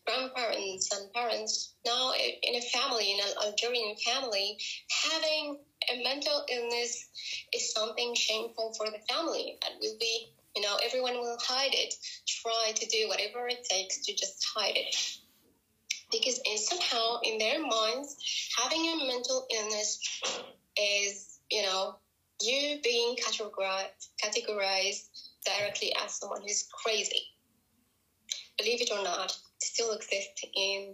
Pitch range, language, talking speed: 215-295 Hz, English, 130 wpm